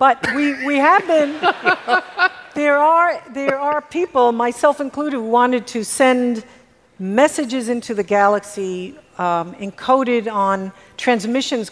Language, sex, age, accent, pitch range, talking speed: English, female, 50-69, American, 195-250 Hz, 120 wpm